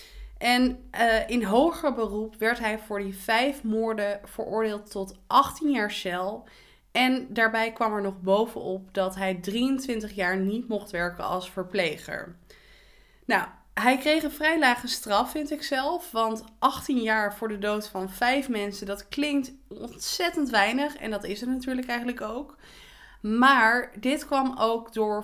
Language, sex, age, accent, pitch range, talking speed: Dutch, female, 20-39, Dutch, 205-260 Hz, 155 wpm